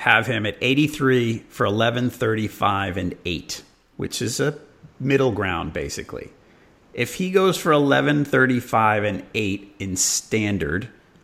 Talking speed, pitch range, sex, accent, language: 135 wpm, 95-135 Hz, male, American, English